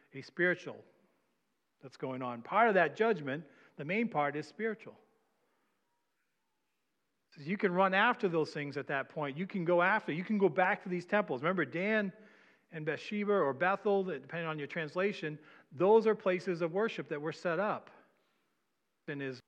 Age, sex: 40-59, male